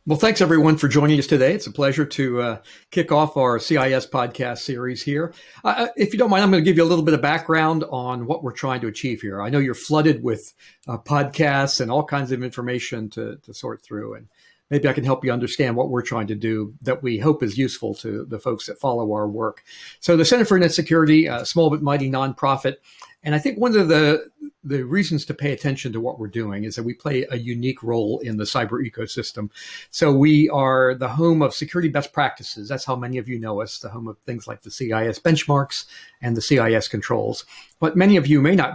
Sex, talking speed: male, 235 wpm